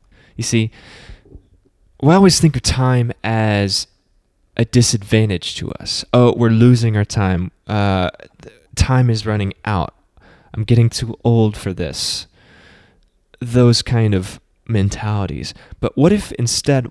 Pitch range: 100-125 Hz